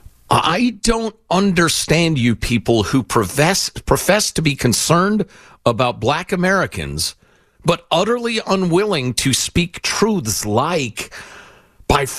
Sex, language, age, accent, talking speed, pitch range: male, English, 50-69, American, 110 wpm, 110-185 Hz